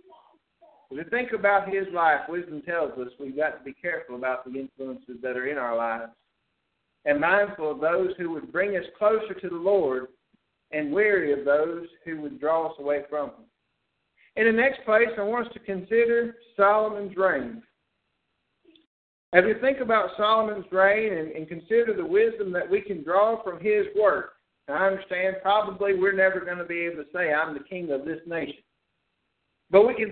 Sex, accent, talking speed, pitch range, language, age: male, American, 185 wpm, 170-225 Hz, English, 60-79